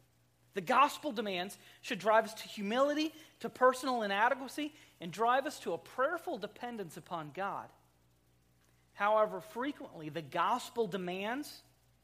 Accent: American